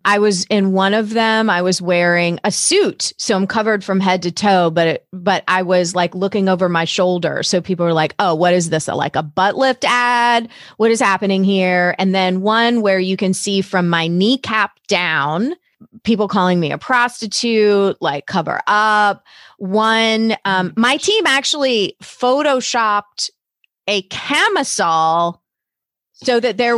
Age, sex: 30-49, female